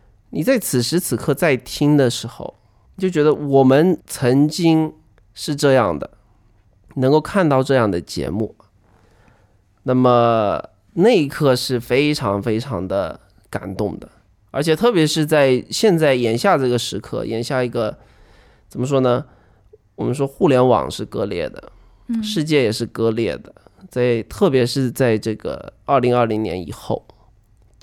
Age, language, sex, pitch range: 20-39, Chinese, male, 110-155 Hz